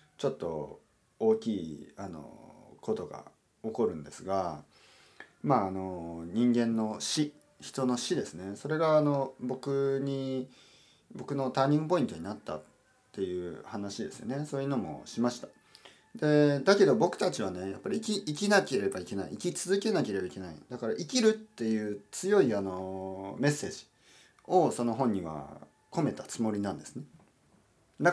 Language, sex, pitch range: Japanese, male, 100-150 Hz